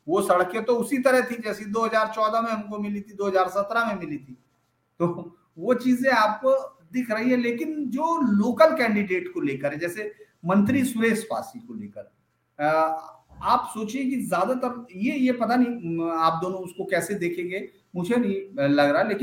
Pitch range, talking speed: 190-260 Hz, 155 wpm